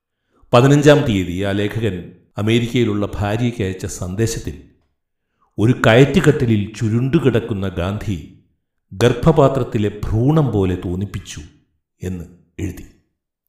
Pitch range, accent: 90-125 Hz, native